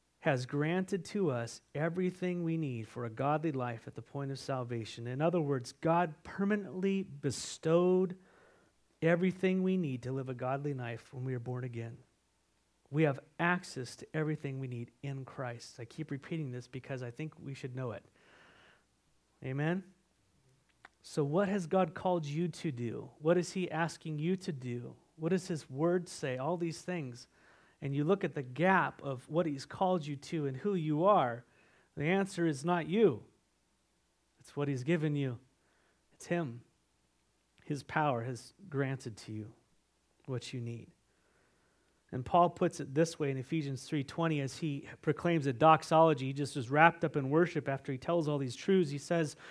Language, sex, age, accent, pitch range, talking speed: Spanish, male, 40-59, American, 135-175 Hz, 175 wpm